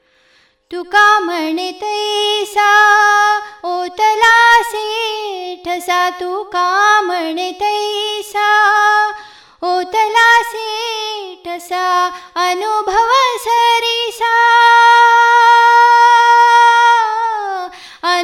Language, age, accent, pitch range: Kannada, 20-39, native, 275-420 Hz